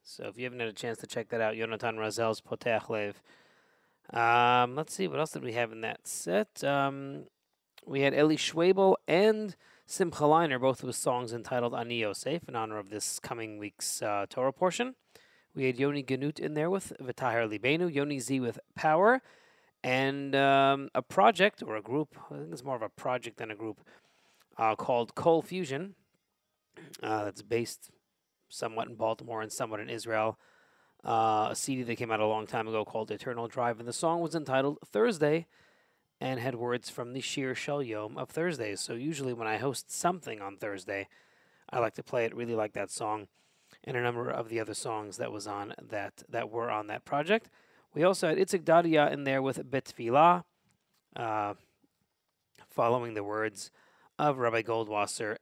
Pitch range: 110-155 Hz